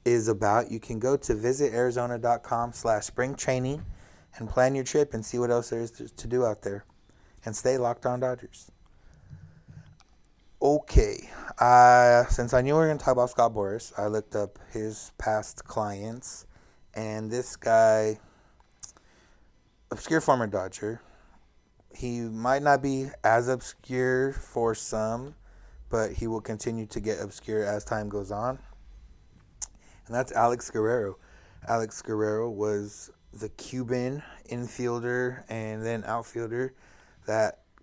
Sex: male